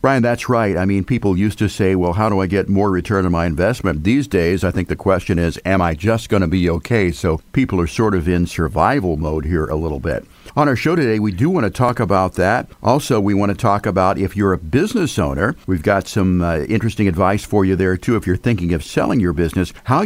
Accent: American